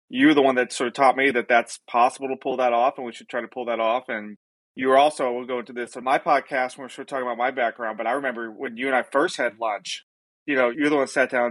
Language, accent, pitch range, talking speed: English, American, 125-145 Hz, 320 wpm